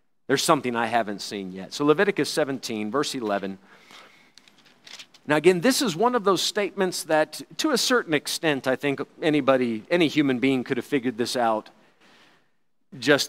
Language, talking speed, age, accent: English, 165 wpm, 50-69, American